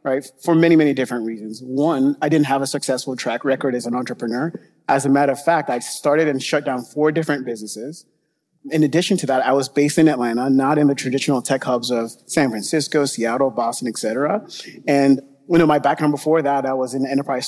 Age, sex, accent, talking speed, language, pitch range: 30-49, male, American, 215 wpm, English, 125-155 Hz